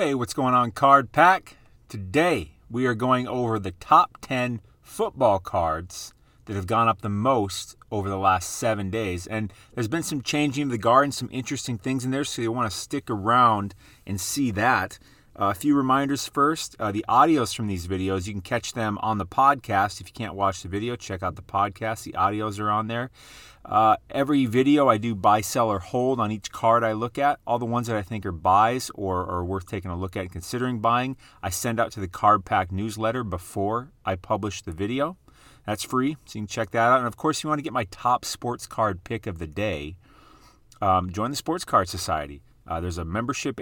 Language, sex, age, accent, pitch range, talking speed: English, male, 30-49, American, 95-120 Hz, 220 wpm